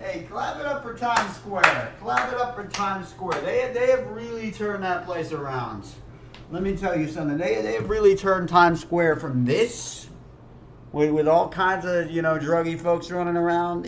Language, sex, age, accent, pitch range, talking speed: English, male, 40-59, American, 135-210 Hz, 200 wpm